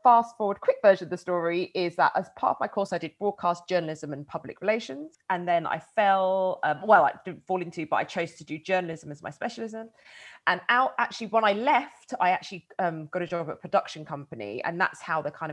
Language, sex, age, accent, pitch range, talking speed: English, female, 30-49, British, 160-215 Hz, 235 wpm